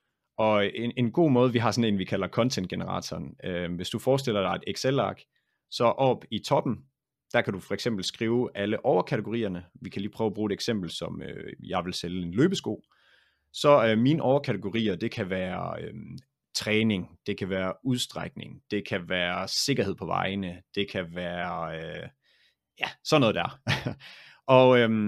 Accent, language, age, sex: native, Danish, 30-49, male